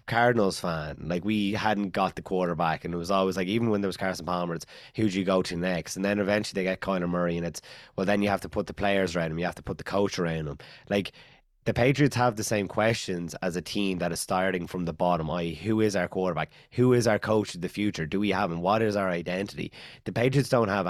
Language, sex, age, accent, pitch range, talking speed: English, male, 20-39, Irish, 90-105 Hz, 265 wpm